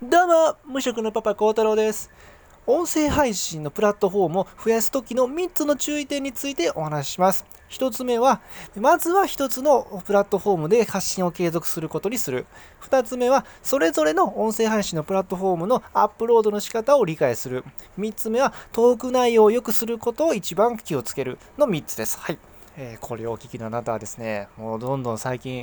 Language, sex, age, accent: Japanese, male, 20-39, native